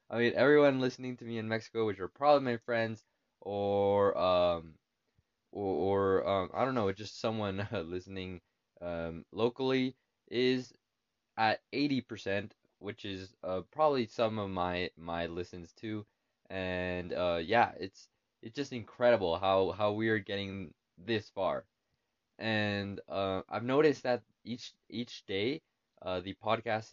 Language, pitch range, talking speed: English, 95-120 Hz, 145 wpm